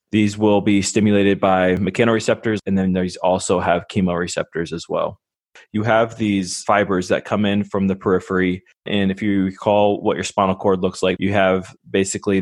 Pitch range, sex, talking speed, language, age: 90-100 Hz, male, 180 wpm, English, 20-39